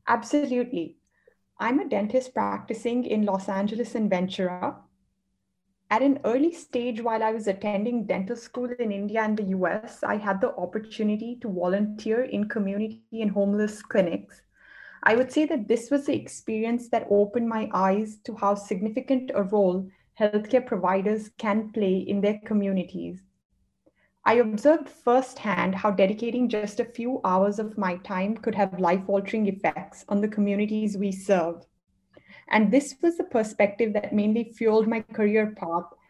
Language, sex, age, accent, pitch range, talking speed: English, female, 20-39, Indian, 195-235 Hz, 155 wpm